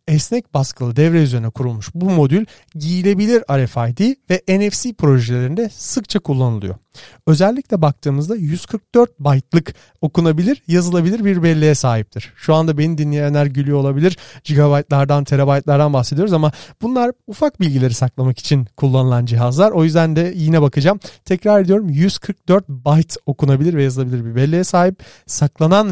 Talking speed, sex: 130 wpm, male